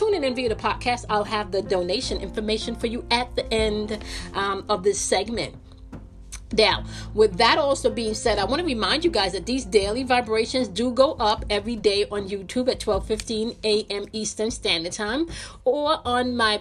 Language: English